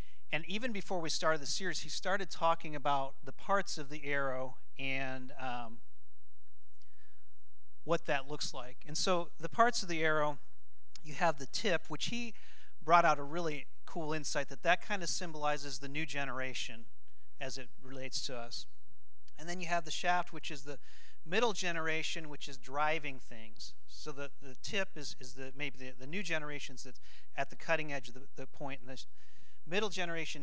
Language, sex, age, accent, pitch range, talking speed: English, male, 40-59, American, 120-165 Hz, 180 wpm